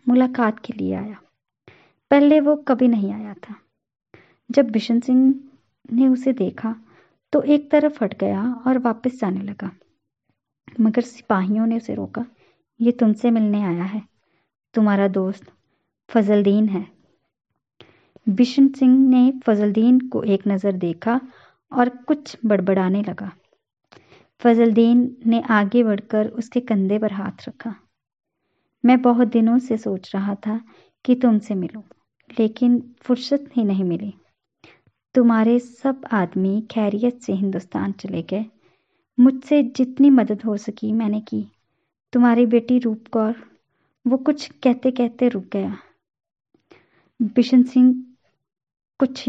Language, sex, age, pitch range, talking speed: Punjabi, male, 20-39, 210-250 Hz, 125 wpm